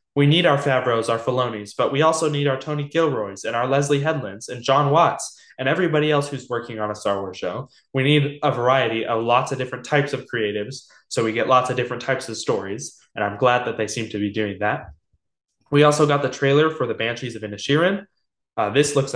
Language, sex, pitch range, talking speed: English, male, 120-150 Hz, 230 wpm